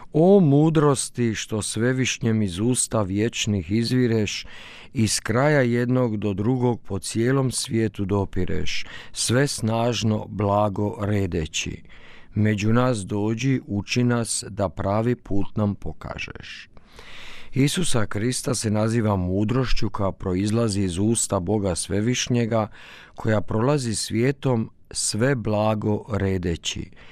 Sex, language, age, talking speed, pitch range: male, Croatian, 50-69, 105 wpm, 100-125 Hz